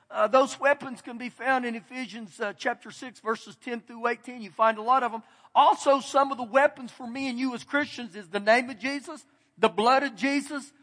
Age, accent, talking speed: 50-69, American, 225 wpm